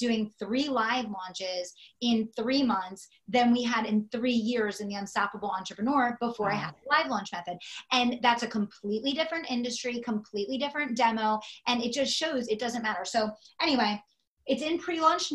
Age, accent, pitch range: 30-49, American, 200-250 Hz